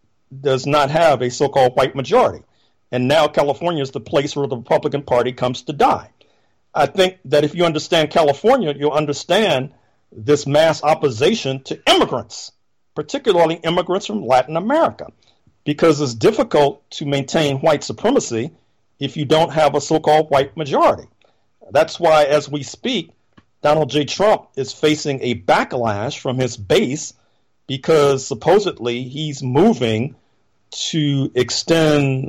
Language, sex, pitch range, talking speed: English, male, 130-155 Hz, 140 wpm